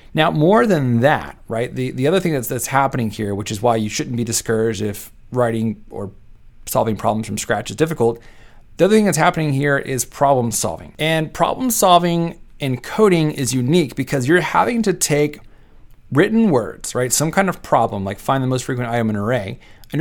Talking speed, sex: 200 wpm, male